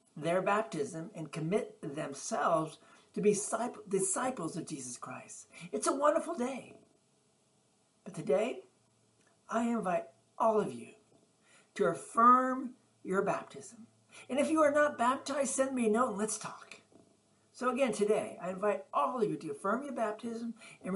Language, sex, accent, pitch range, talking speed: English, male, American, 170-230 Hz, 150 wpm